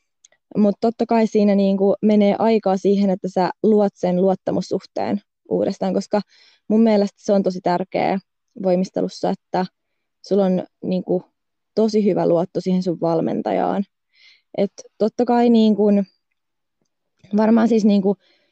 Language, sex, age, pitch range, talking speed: Finnish, female, 20-39, 180-210 Hz, 125 wpm